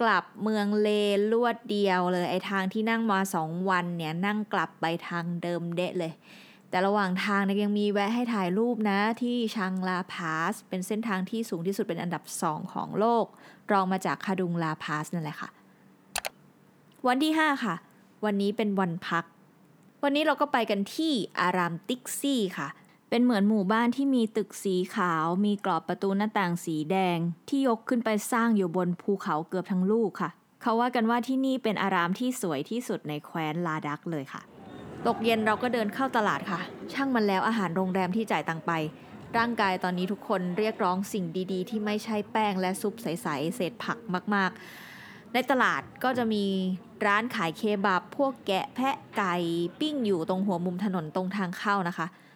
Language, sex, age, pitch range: English, female, 20-39, 180-220 Hz